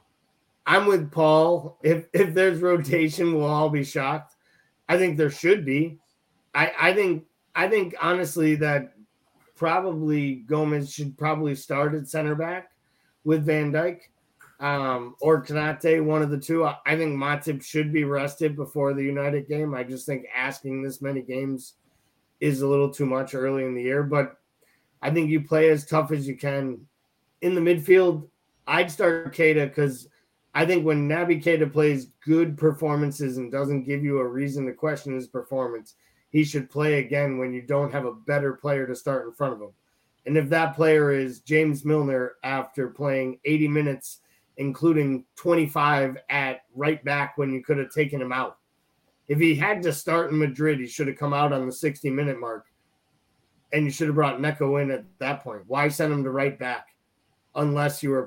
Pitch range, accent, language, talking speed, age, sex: 135-155 Hz, American, English, 185 wpm, 20-39, male